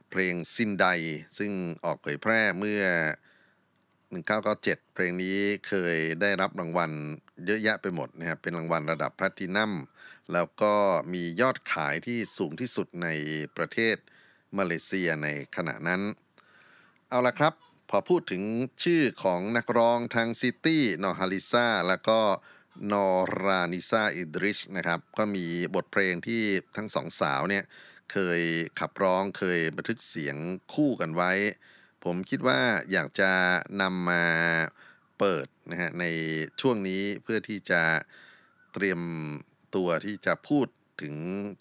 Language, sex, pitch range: Thai, male, 85-105 Hz